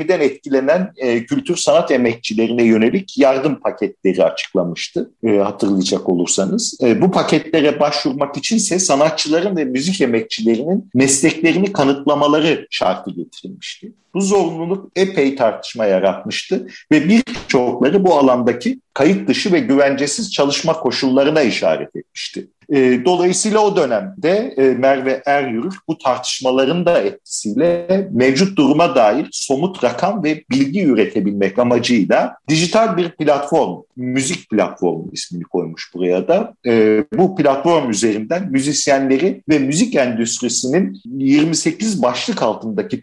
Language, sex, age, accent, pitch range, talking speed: Turkish, male, 50-69, native, 125-185 Hz, 110 wpm